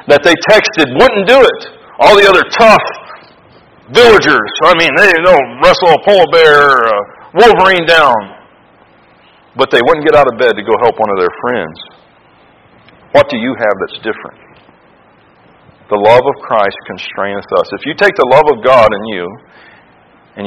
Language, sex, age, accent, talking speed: English, male, 40-59, American, 170 wpm